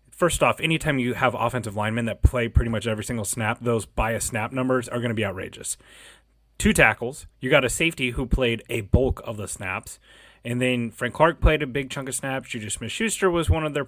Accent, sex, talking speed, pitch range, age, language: American, male, 225 wpm, 110-130 Hz, 30-49, English